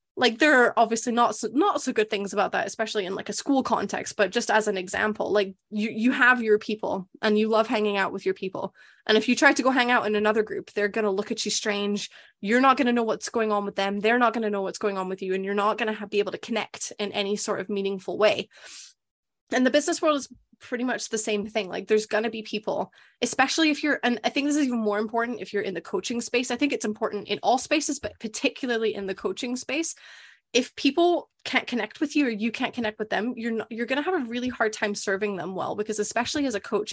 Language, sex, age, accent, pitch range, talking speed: English, female, 20-39, American, 205-245 Hz, 270 wpm